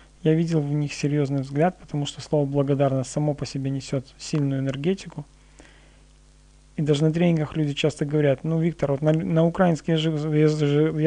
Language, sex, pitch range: Russian, male, 140-170 Hz